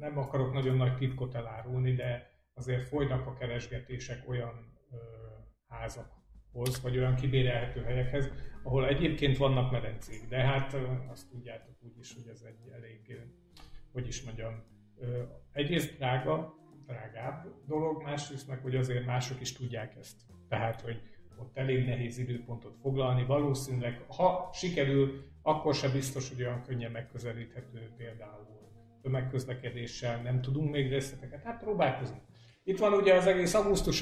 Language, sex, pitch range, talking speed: Hungarian, male, 115-135 Hz, 145 wpm